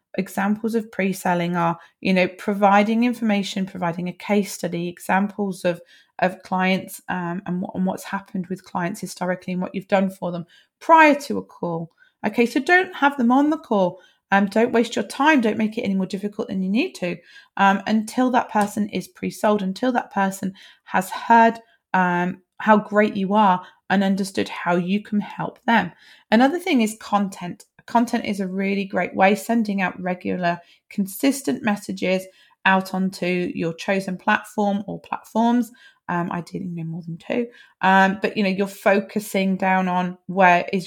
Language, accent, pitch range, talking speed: English, British, 185-220 Hz, 170 wpm